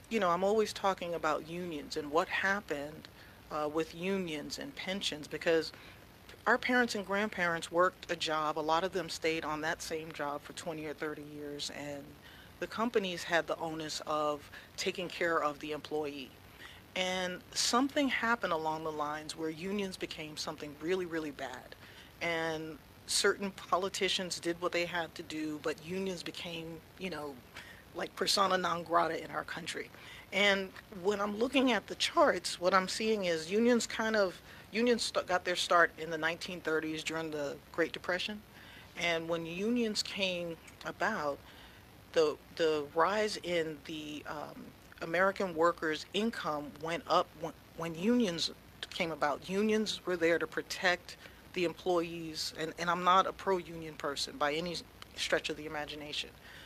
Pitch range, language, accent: 155-190 Hz, English, American